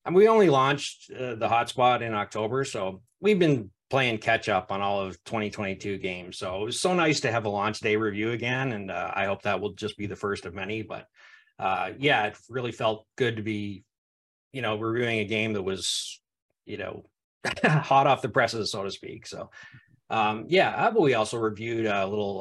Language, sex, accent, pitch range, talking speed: English, male, American, 105-140 Hz, 205 wpm